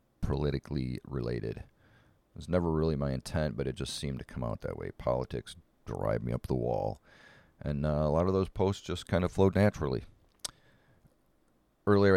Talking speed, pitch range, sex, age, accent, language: 180 wpm, 70-90 Hz, male, 40-59, American, English